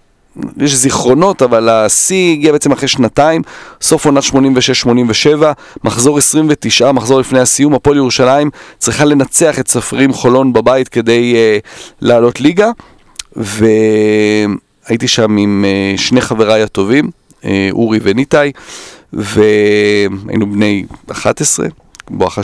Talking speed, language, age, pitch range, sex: 110 wpm, Hebrew, 30-49, 110-135 Hz, male